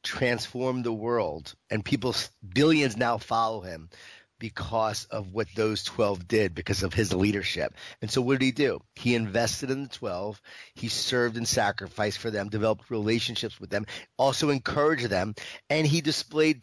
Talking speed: 165 wpm